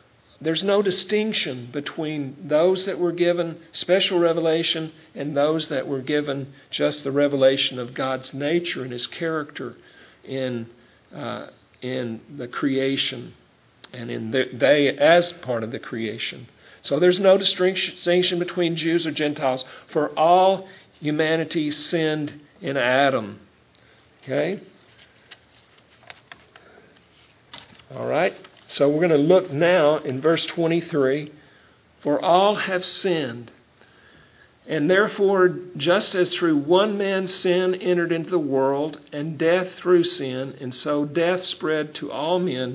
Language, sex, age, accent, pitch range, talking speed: English, male, 50-69, American, 135-175 Hz, 125 wpm